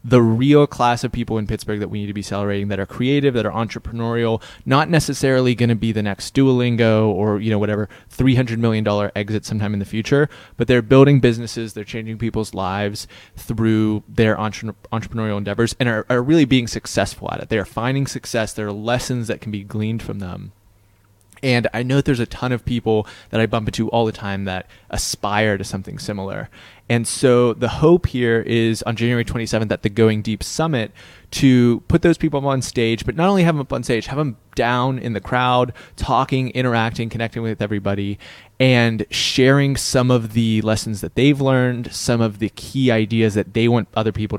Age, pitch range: 20-39, 105-125 Hz